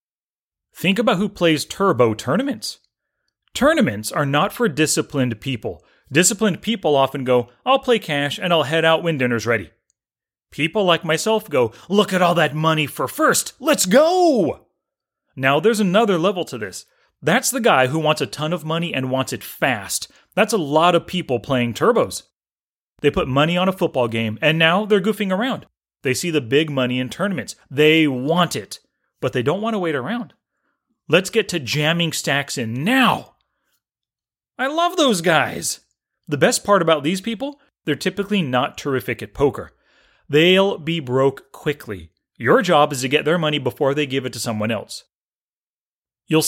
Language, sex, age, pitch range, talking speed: English, male, 30-49, 135-200 Hz, 175 wpm